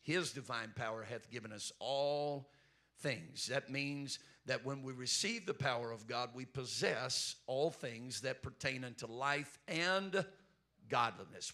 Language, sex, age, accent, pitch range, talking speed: English, male, 50-69, American, 125-155 Hz, 145 wpm